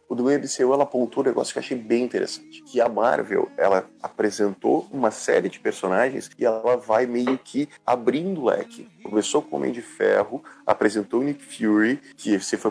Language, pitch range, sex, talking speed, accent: Portuguese, 120-165 Hz, male, 200 wpm, Brazilian